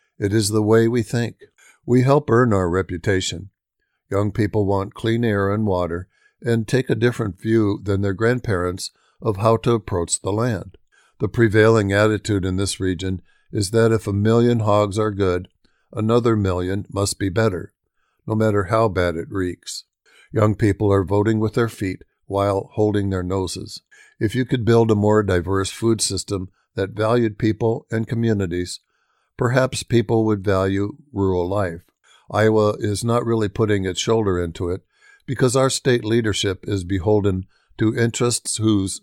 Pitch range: 95-115 Hz